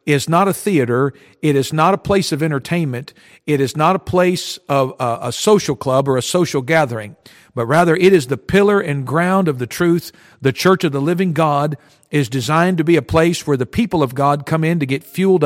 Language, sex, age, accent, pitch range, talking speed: English, male, 50-69, American, 140-180 Hz, 220 wpm